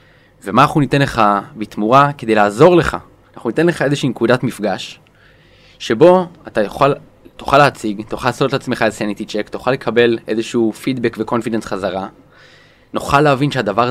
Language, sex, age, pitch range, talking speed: Hebrew, male, 20-39, 100-120 Hz, 145 wpm